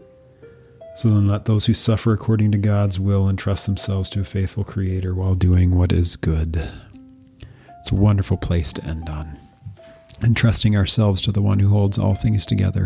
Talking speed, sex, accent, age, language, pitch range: 175 wpm, male, American, 40-59, English, 95-110 Hz